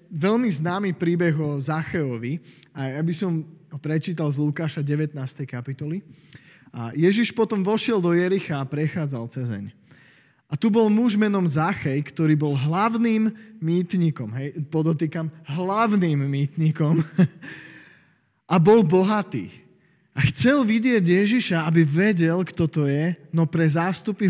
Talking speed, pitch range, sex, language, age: 125 wpm, 150-190 Hz, male, Slovak, 20-39